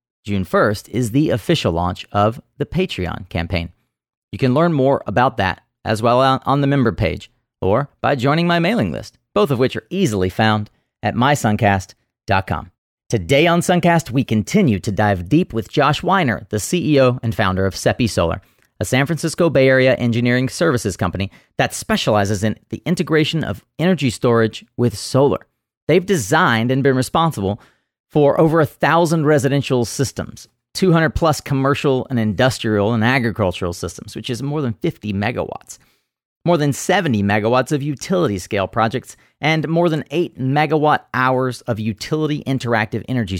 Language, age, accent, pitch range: English, 40-59, American, 105-145 Hz